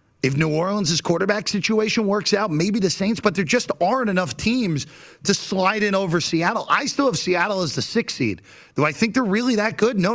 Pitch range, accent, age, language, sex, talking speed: 140-200 Hz, American, 40-59, English, male, 220 wpm